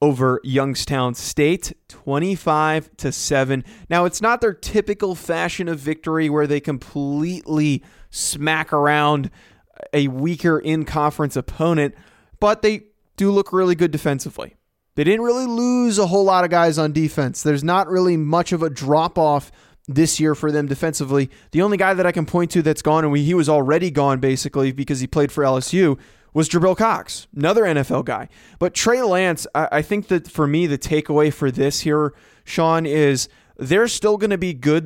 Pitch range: 145-180 Hz